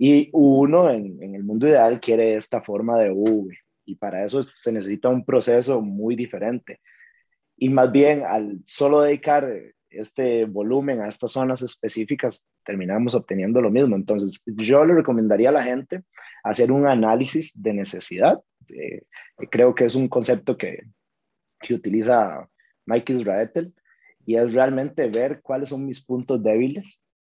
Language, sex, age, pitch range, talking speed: Spanish, male, 30-49, 115-150 Hz, 150 wpm